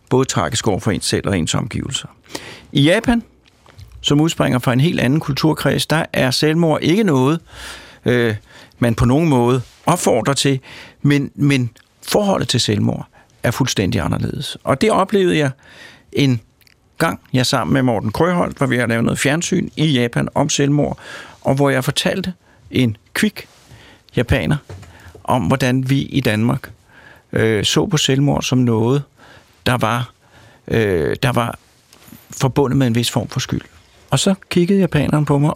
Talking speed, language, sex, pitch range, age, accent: 160 wpm, Danish, male, 120-150 Hz, 60-79, native